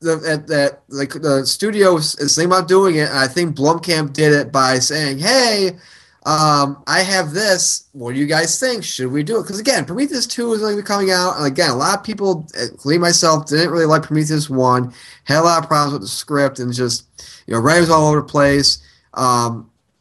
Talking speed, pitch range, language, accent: 220 wpm, 130-170 Hz, English, American